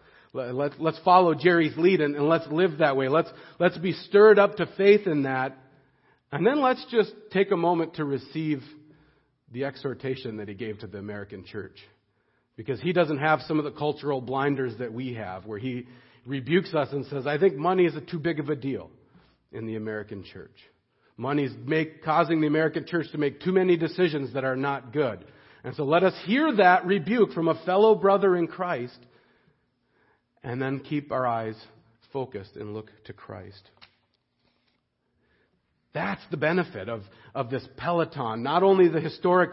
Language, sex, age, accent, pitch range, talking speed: English, male, 40-59, American, 130-180 Hz, 180 wpm